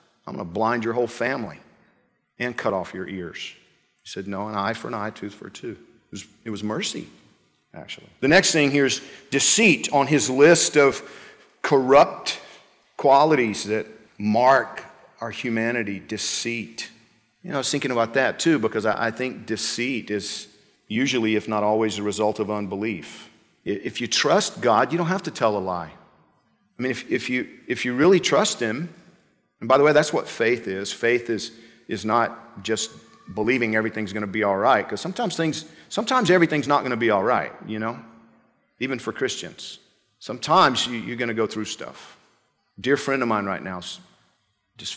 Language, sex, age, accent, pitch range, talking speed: English, male, 50-69, American, 105-130 Hz, 185 wpm